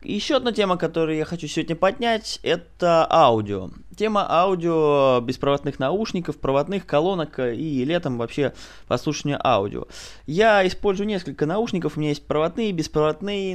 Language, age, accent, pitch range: Russian, 20-39, native, 120-175 Hz